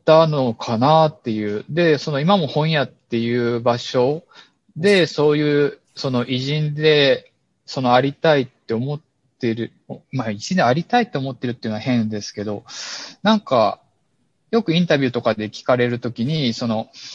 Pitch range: 115-155 Hz